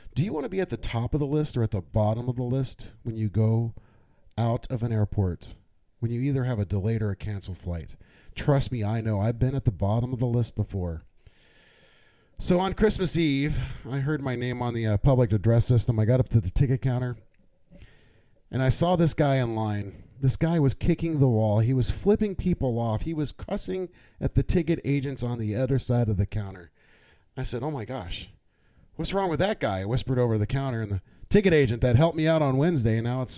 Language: English